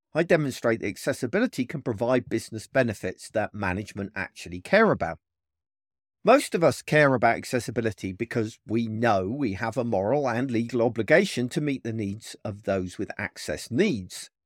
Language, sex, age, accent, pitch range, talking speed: English, male, 50-69, British, 100-165 Hz, 160 wpm